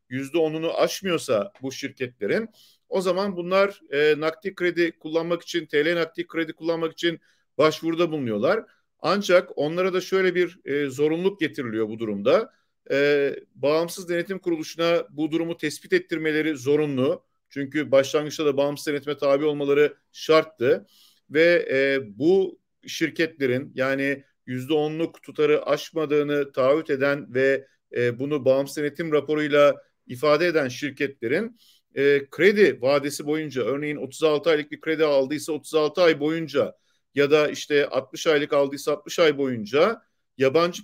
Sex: male